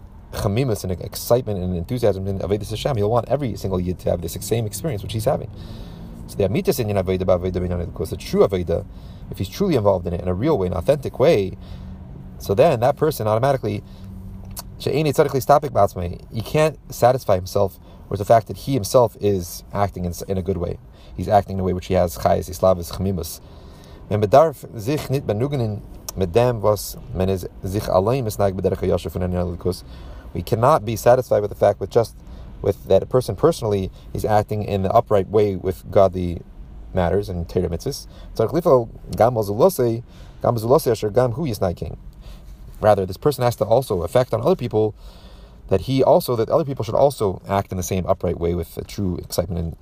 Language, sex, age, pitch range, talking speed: English, male, 30-49, 90-115 Hz, 145 wpm